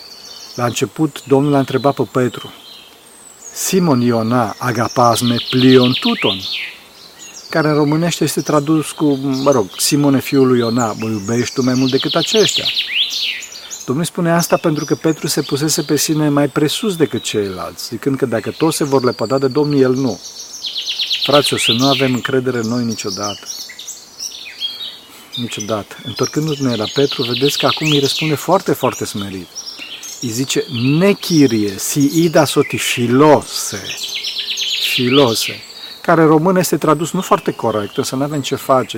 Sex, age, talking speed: male, 40-59, 150 wpm